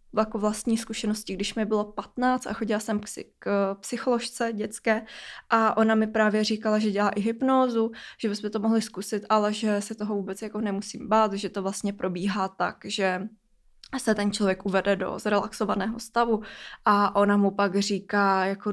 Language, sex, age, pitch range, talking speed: Czech, female, 20-39, 195-220 Hz, 175 wpm